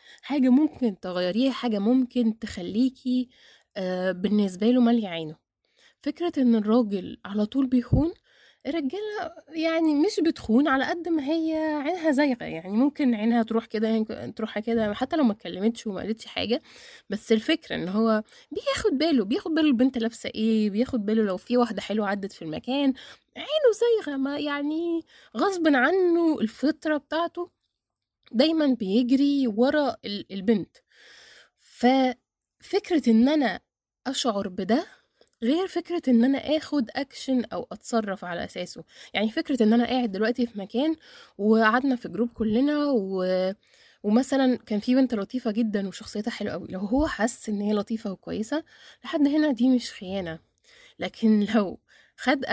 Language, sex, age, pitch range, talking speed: Arabic, female, 20-39, 215-290 Hz, 145 wpm